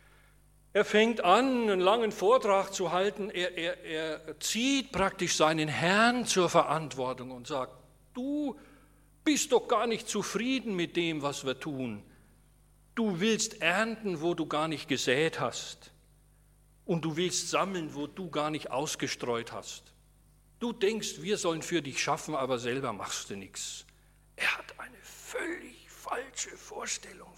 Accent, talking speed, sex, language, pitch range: German, 145 wpm, male, German, 155-225 Hz